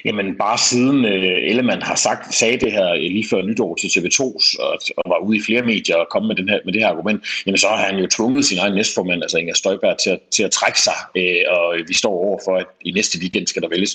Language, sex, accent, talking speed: Danish, male, native, 265 wpm